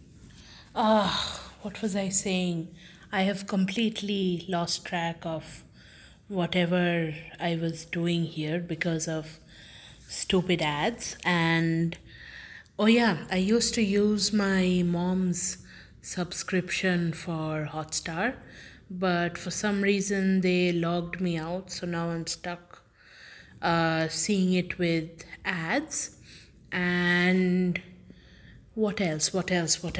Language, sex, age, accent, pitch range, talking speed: English, female, 20-39, Indian, 165-195 Hz, 110 wpm